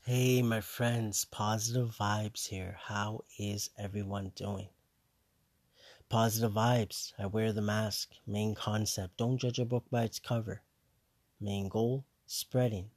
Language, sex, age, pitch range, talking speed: English, male, 30-49, 100-115 Hz, 130 wpm